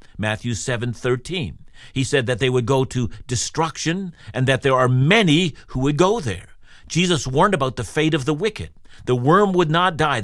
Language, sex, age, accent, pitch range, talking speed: English, male, 50-69, American, 115-165 Hz, 190 wpm